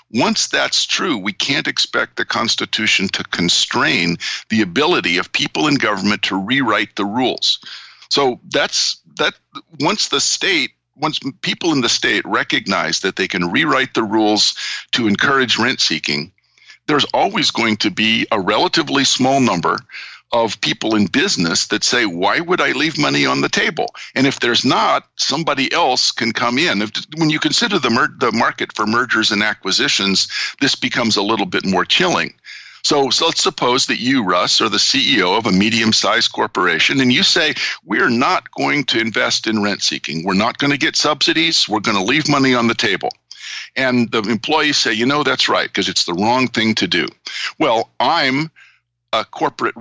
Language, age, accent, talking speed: English, 50-69, American, 185 wpm